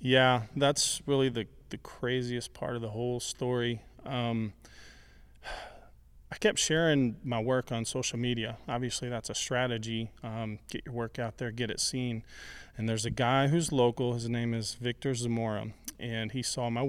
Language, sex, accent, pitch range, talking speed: English, male, American, 110-130 Hz, 170 wpm